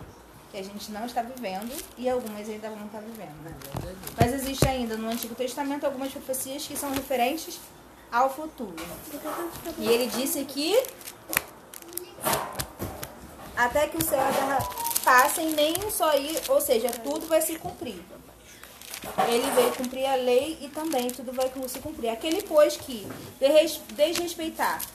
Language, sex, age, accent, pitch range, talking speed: Portuguese, female, 20-39, Brazilian, 220-295 Hz, 145 wpm